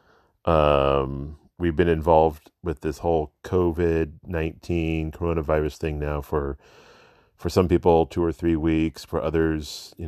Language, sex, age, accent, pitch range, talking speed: English, male, 40-59, American, 80-100 Hz, 130 wpm